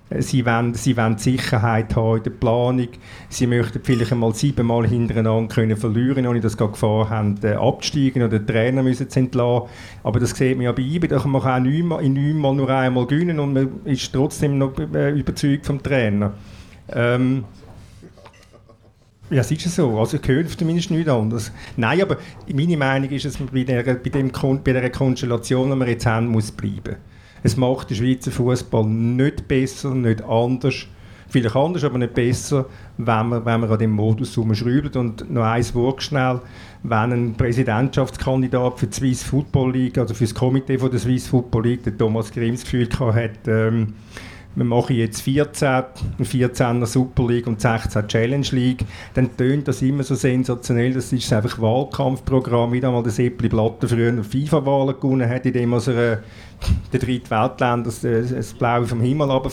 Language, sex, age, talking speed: German, male, 50-69, 170 wpm